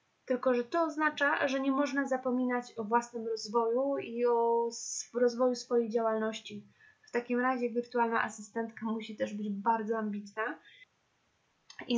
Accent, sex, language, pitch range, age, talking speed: native, female, Polish, 225-265 Hz, 10-29, 135 wpm